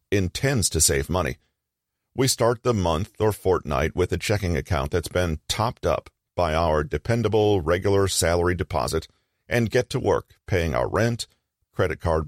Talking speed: 160 wpm